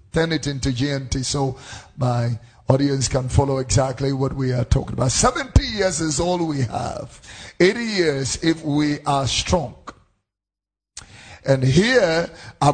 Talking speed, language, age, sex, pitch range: 140 wpm, English, 50-69, male, 120-165 Hz